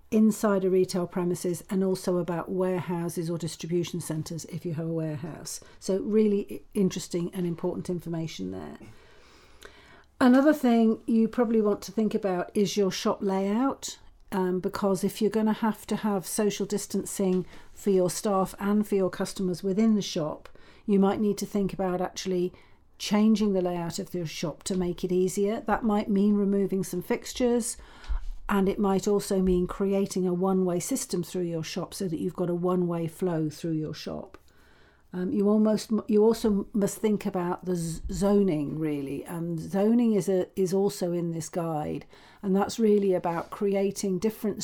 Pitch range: 175-205 Hz